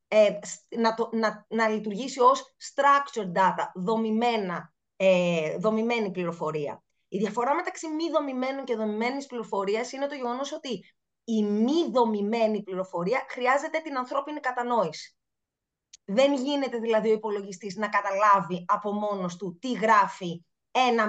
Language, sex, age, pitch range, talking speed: Greek, female, 20-39, 200-250 Hz, 130 wpm